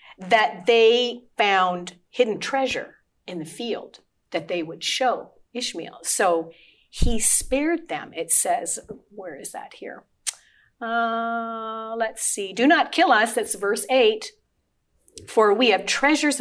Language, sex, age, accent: English, female, 50-69, American